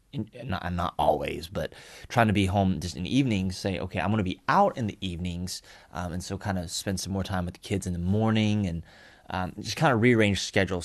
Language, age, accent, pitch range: English, 20-39, American, 90-115 Hz